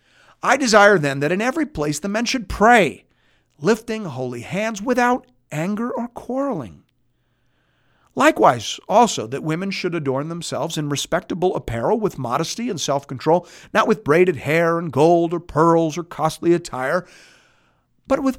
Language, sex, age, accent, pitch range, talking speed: English, male, 50-69, American, 130-195 Hz, 145 wpm